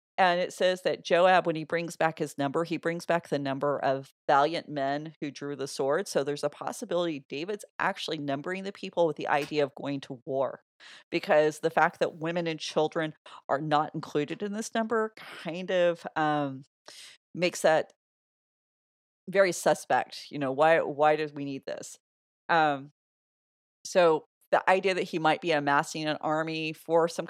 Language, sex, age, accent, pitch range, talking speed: English, female, 40-59, American, 145-175 Hz, 175 wpm